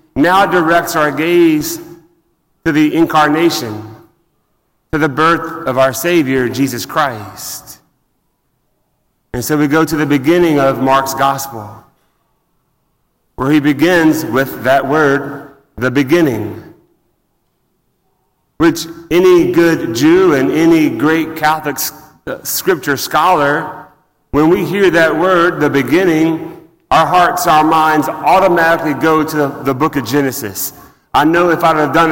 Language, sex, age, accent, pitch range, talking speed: English, male, 40-59, American, 140-165 Hz, 125 wpm